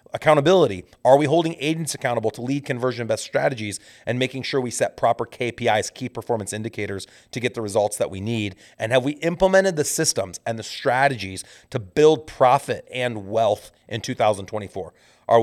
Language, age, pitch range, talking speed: English, 30-49, 110-135 Hz, 175 wpm